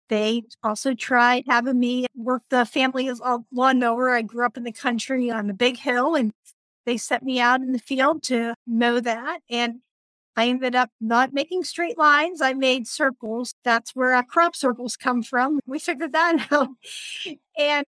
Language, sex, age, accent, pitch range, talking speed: English, female, 50-69, American, 230-270 Hz, 185 wpm